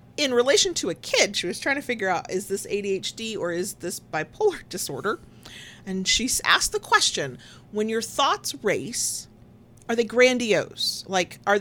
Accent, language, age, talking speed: American, English, 30-49, 170 wpm